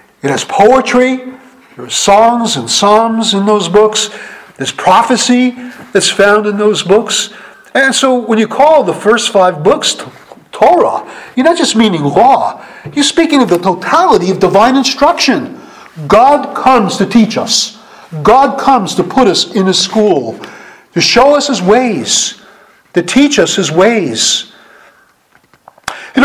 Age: 50-69